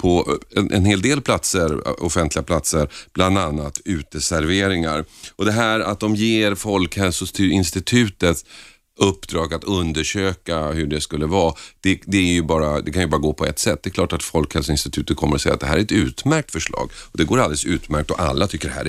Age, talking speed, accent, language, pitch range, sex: 40-59, 200 wpm, native, Swedish, 75-100 Hz, male